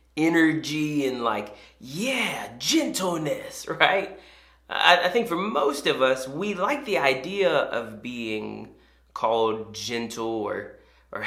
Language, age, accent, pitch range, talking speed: English, 20-39, American, 125-180 Hz, 120 wpm